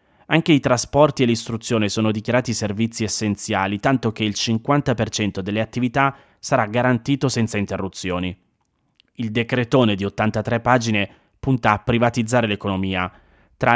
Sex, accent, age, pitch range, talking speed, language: male, native, 20-39, 105-125 Hz, 125 wpm, Italian